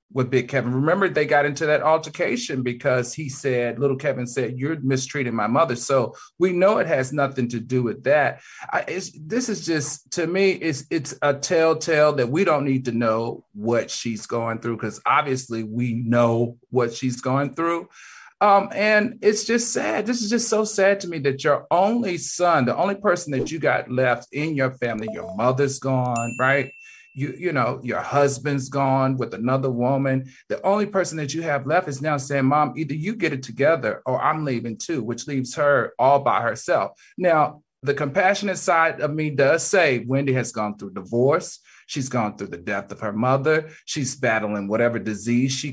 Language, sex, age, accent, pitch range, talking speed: English, male, 40-59, American, 120-160 Hz, 195 wpm